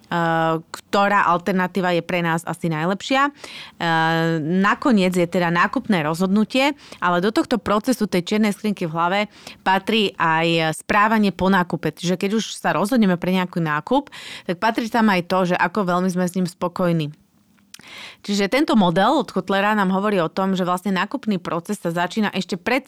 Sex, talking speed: female, 165 wpm